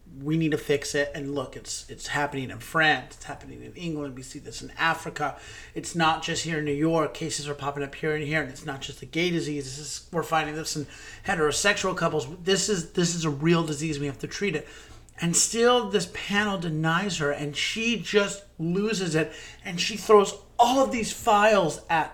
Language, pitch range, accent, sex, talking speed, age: English, 150-205 Hz, American, male, 215 wpm, 30-49